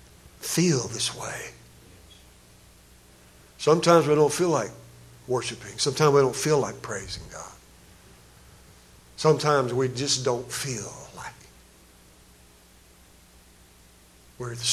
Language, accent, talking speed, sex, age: English, American, 95 wpm, male, 60-79